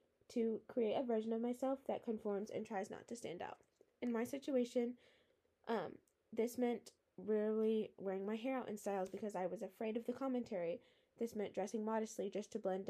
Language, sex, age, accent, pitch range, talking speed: English, female, 10-29, American, 200-240 Hz, 190 wpm